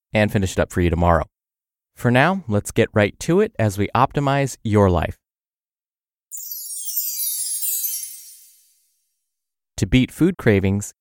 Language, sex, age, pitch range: English, male, 30-49, 100-140 Hz